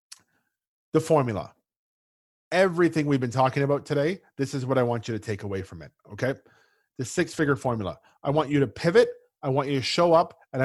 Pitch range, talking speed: 120-155 Hz, 195 wpm